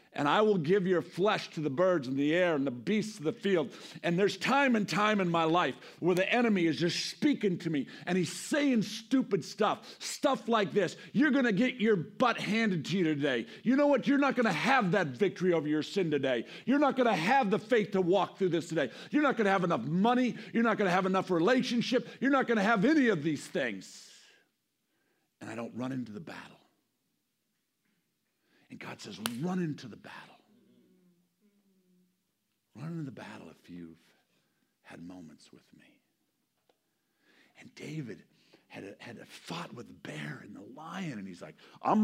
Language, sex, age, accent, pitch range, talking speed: English, male, 50-69, American, 165-230 Hz, 195 wpm